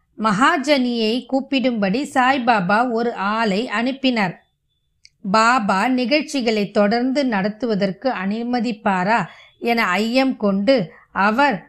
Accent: native